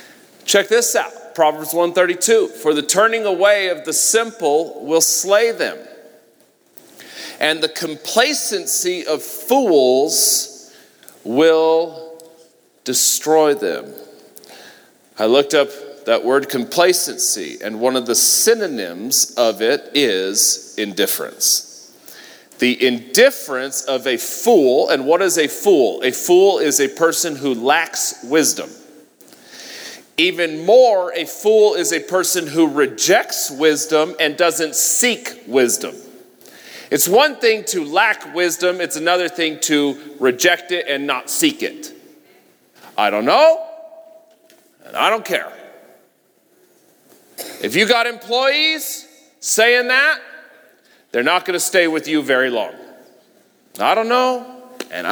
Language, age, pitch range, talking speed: English, 40-59, 155-245 Hz, 125 wpm